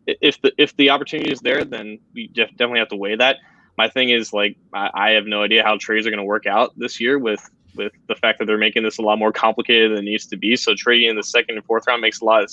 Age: 10-29